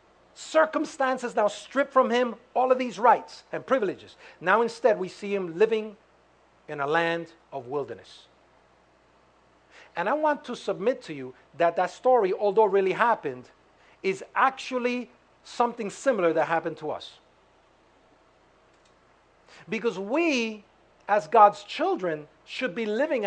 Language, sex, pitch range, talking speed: English, male, 170-250 Hz, 130 wpm